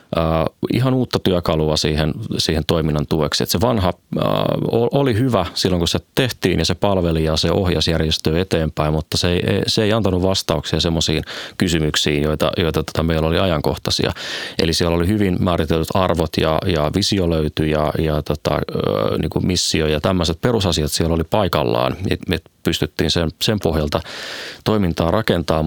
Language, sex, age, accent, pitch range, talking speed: Finnish, male, 30-49, native, 80-95 Hz, 170 wpm